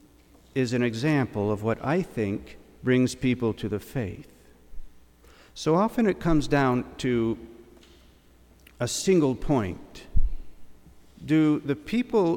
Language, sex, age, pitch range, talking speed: English, male, 50-69, 115-160 Hz, 115 wpm